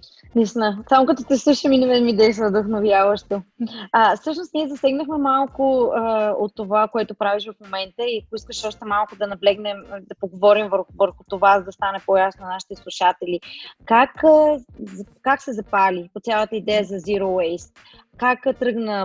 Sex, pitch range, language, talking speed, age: female, 200-235 Hz, Bulgarian, 165 wpm, 20-39